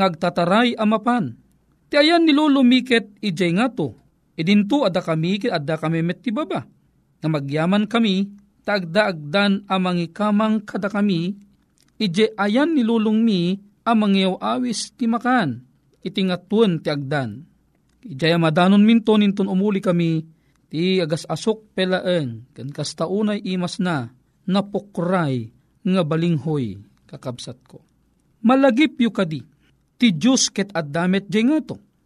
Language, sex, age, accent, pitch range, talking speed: Filipino, male, 40-59, native, 175-235 Hz, 115 wpm